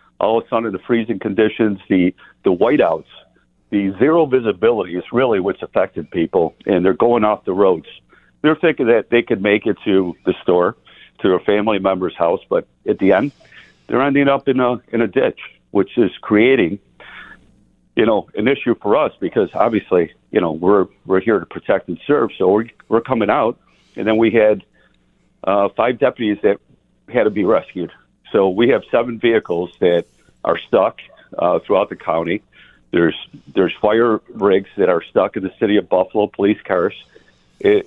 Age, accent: 60-79, American